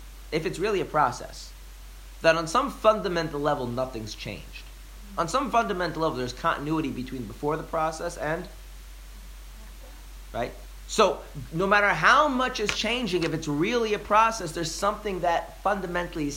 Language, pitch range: English, 95-160 Hz